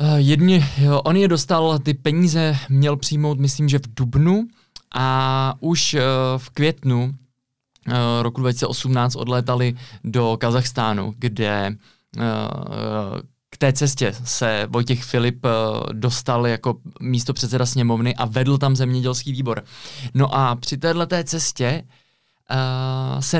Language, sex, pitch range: Czech, male, 125-145 Hz